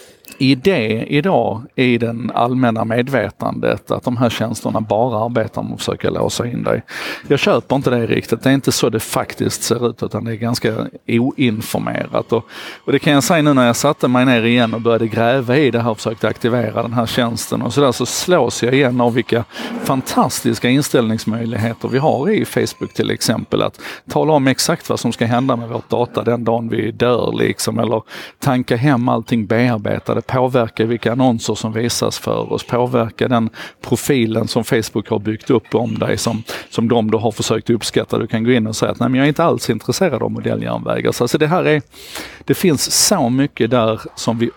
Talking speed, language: 205 wpm, Swedish